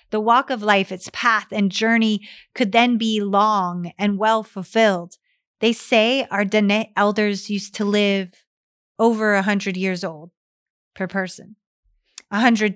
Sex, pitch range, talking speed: female, 195-230 Hz, 150 wpm